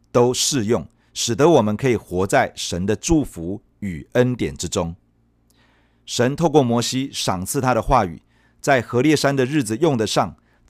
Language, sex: Chinese, male